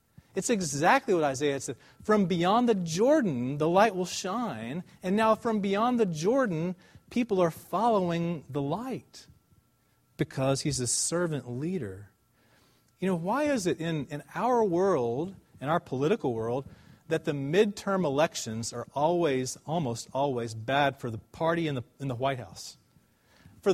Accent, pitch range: American, 135-195 Hz